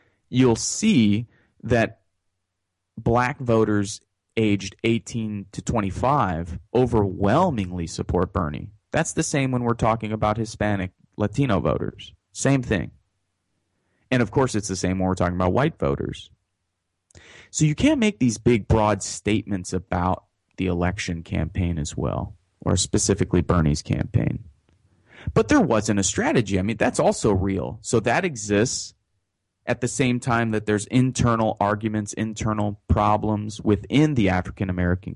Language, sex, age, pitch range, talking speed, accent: English, male, 30-49, 95-115 Hz, 135 wpm, American